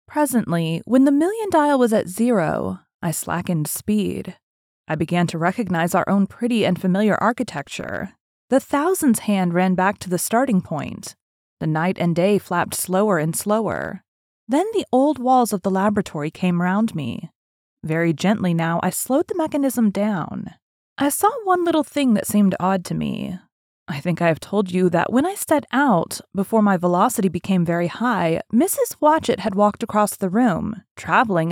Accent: American